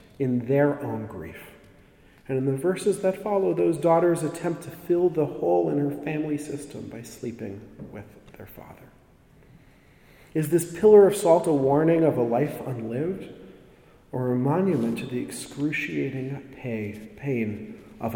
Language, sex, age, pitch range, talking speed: English, male, 40-59, 105-145 Hz, 150 wpm